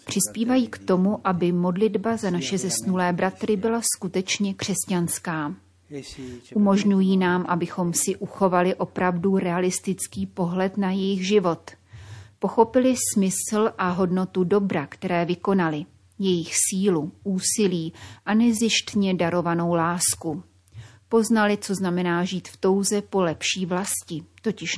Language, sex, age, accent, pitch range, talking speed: Czech, female, 30-49, native, 170-200 Hz, 115 wpm